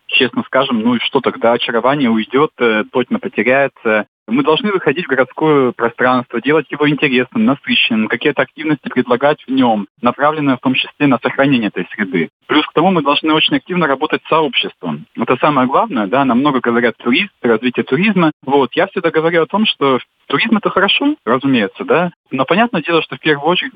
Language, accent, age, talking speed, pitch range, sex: Russian, native, 20-39, 180 wpm, 125-160 Hz, male